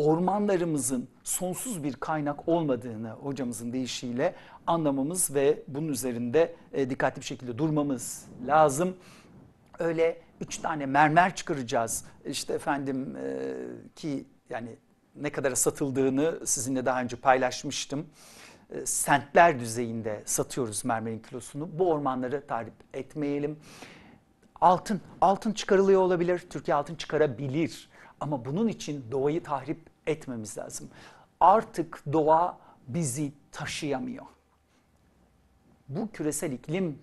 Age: 60-79